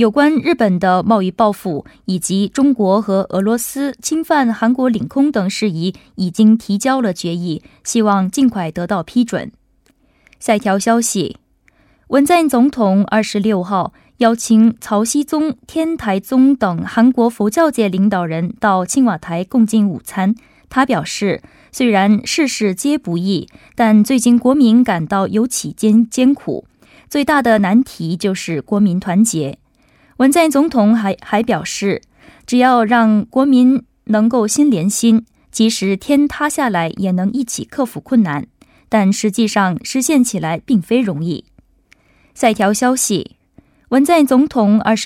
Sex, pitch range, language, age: female, 195-255 Hz, Korean, 20-39